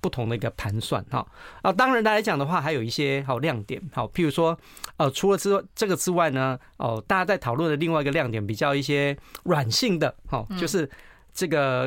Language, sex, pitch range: Chinese, male, 120-175 Hz